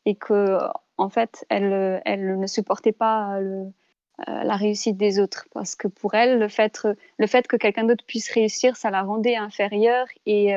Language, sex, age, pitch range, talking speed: French, female, 20-39, 200-230 Hz, 180 wpm